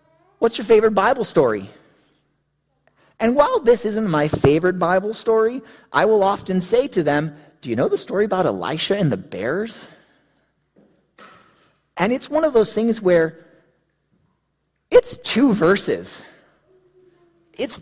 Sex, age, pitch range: male, 30-49, 185-255 Hz